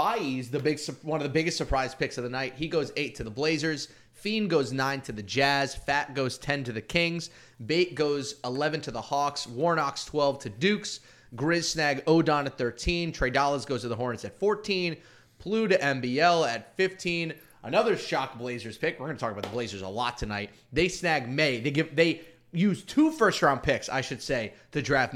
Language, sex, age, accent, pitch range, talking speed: English, male, 30-49, American, 125-165 Hz, 205 wpm